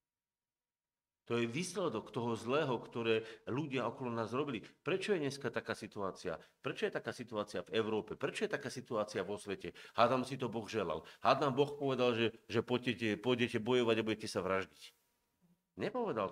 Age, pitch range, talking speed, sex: 50-69, 115-155 Hz, 160 wpm, male